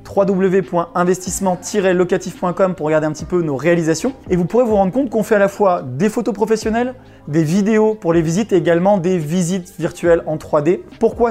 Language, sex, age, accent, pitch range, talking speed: French, male, 20-39, French, 165-195 Hz, 185 wpm